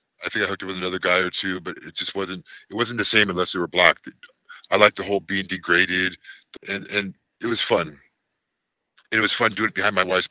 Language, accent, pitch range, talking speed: English, American, 95-105 Hz, 240 wpm